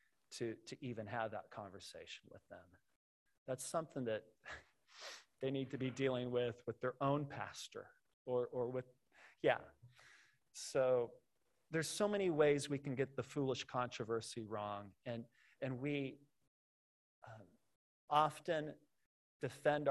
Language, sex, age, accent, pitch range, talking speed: English, male, 40-59, American, 115-145 Hz, 130 wpm